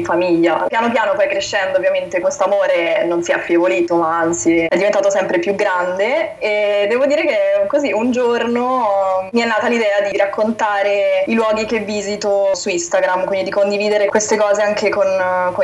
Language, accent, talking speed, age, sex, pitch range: Italian, native, 175 wpm, 20-39, female, 185-275 Hz